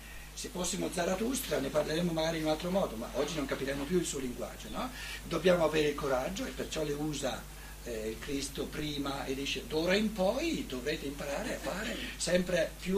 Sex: male